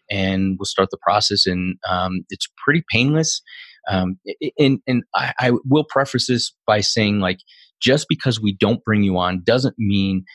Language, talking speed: English, 175 wpm